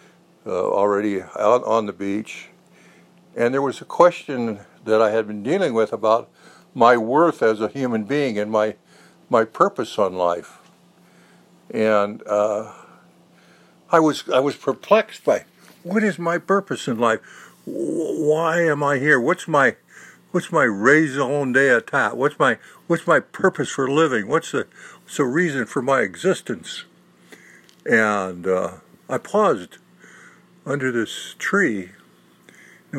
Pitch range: 105-165 Hz